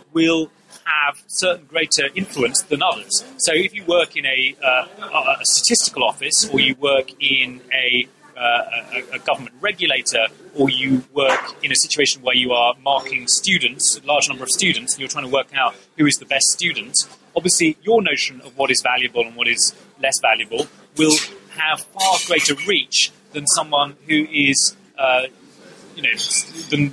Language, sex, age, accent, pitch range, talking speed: English, male, 30-49, British, 130-155 Hz, 175 wpm